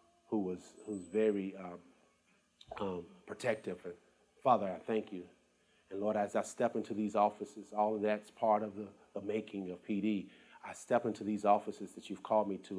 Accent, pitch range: American, 95-105 Hz